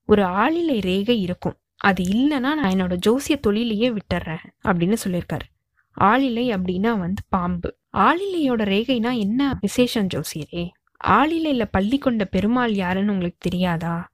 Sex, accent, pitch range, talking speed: female, native, 185-245 Hz, 125 wpm